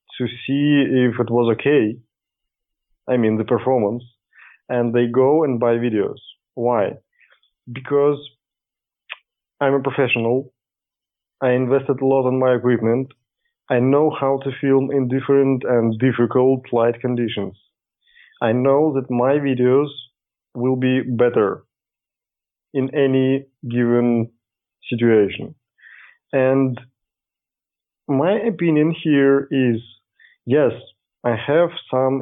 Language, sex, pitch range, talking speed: English, male, 120-140 Hz, 110 wpm